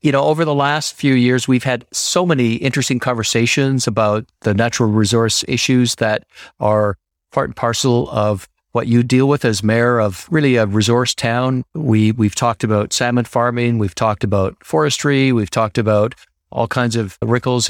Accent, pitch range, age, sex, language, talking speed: American, 110-130 Hz, 50-69, male, English, 175 wpm